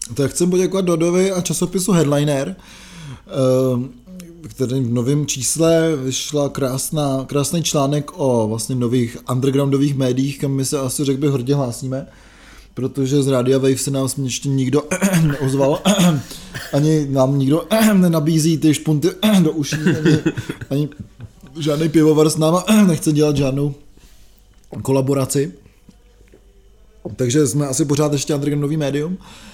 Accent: native